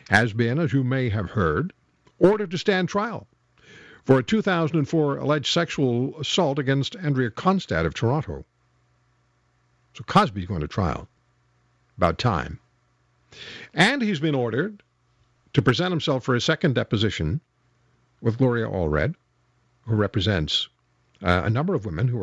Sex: male